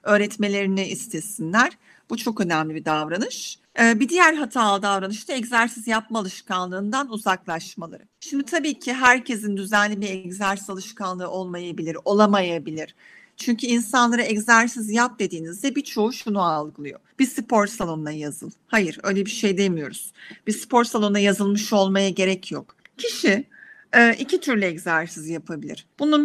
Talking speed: 130 wpm